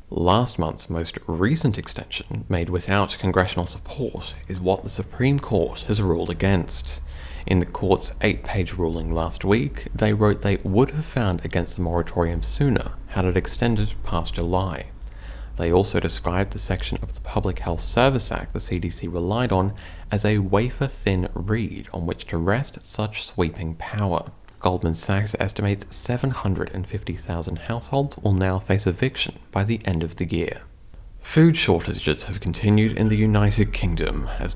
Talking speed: 155 wpm